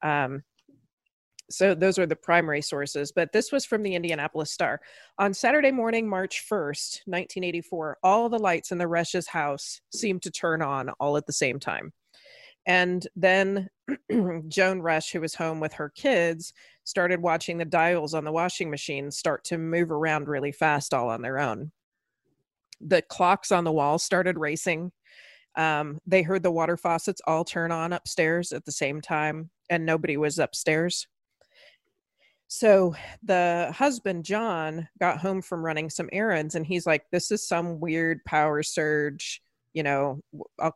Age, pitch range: 30-49, 155-185 Hz